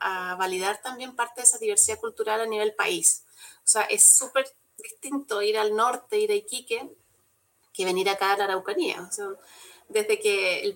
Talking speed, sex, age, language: 185 wpm, female, 30-49, Spanish